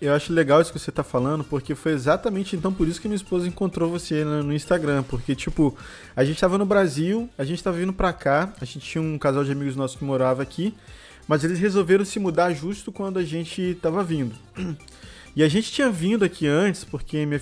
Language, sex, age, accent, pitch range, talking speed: Portuguese, male, 20-39, Brazilian, 140-185 Hz, 225 wpm